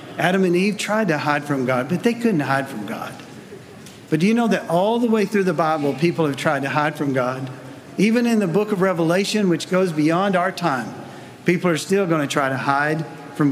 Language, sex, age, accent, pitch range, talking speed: English, male, 50-69, American, 145-200 Hz, 230 wpm